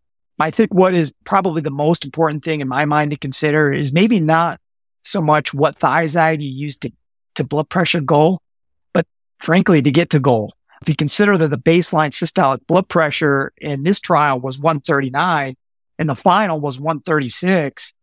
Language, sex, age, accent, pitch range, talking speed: English, male, 40-59, American, 135-165 Hz, 175 wpm